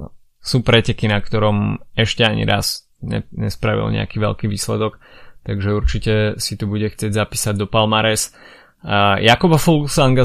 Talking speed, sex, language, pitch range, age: 140 wpm, male, Slovak, 105-115 Hz, 20-39